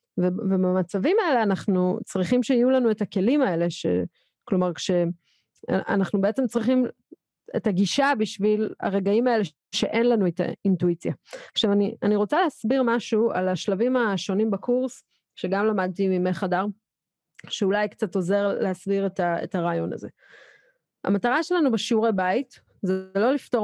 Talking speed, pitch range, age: 65 wpm, 185-240 Hz, 30-49